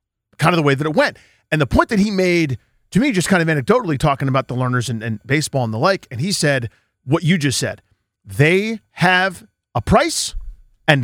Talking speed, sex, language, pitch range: 225 wpm, male, English, 135-195 Hz